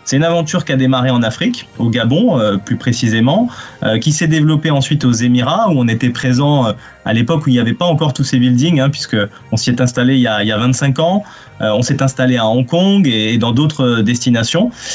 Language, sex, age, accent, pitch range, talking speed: French, male, 20-39, French, 125-165 Hz, 245 wpm